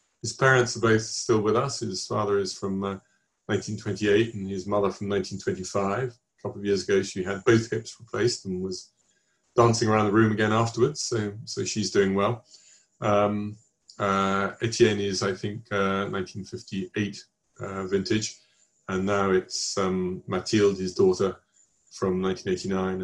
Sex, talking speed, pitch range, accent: male, 155 wpm, 95-115 Hz, British